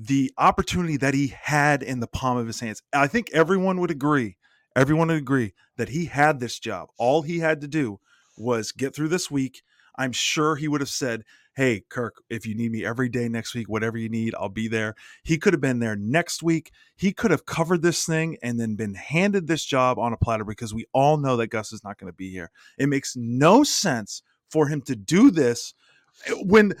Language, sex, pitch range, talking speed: English, male, 135-215 Hz, 225 wpm